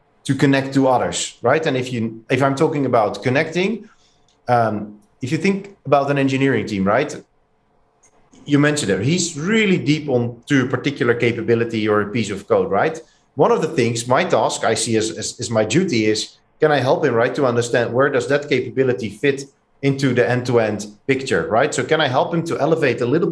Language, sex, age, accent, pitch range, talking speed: English, male, 40-59, Dutch, 115-150 Hz, 205 wpm